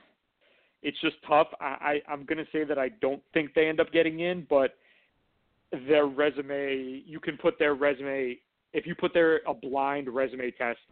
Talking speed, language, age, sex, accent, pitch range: 175 wpm, English, 30-49, male, American, 125-145 Hz